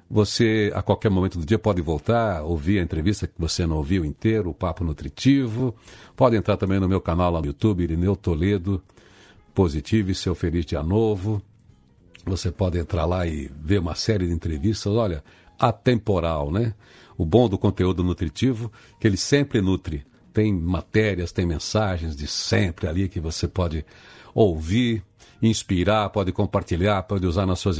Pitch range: 90-115 Hz